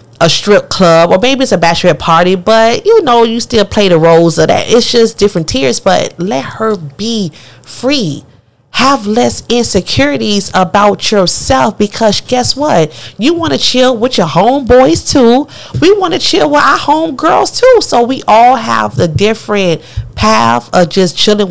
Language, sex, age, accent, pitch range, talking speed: English, female, 30-49, American, 160-235 Hz, 175 wpm